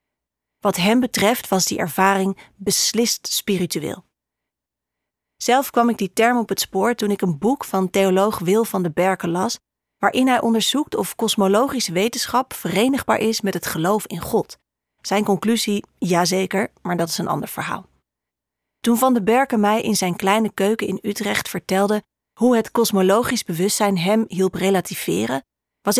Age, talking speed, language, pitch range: 40-59, 160 wpm, Dutch, 185-220 Hz